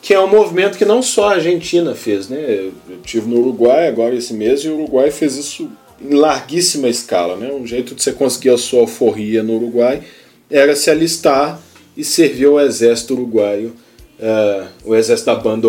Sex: male